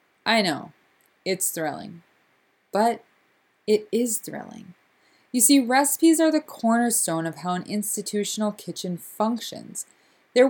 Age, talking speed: 20-39, 120 wpm